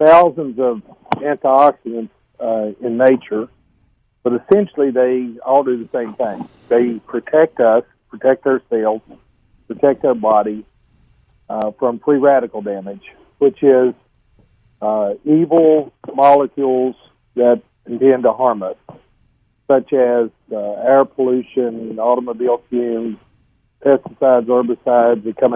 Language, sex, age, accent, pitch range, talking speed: English, male, 50-69, American, 115-140 Hz, 115 wpm